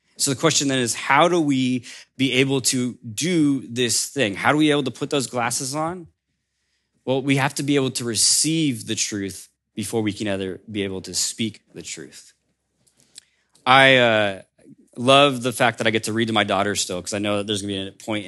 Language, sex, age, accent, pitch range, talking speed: English, male, 20-39, American, 105-135 Hz, 215 wpm